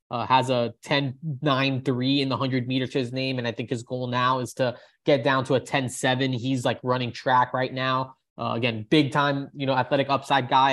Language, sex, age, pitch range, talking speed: English, male, 20-39, 125-145 Hz, 235 wpm